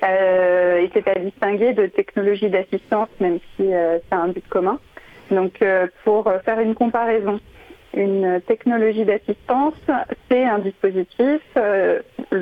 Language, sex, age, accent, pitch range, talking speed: French, female, 40-59, French, 190-240 Hz, 135 wpm